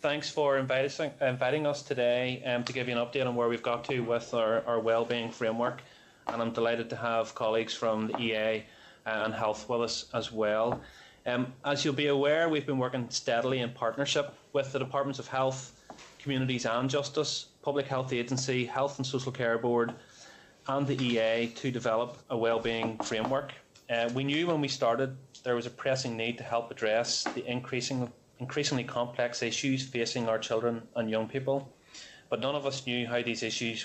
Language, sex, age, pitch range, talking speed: English, male, 30-49, 115-130 Hz, 185 wpm